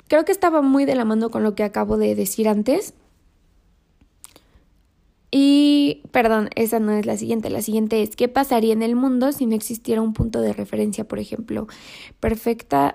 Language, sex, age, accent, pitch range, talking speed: English, female, 20-39, Mexican, 215-265 Hz, 180 wpm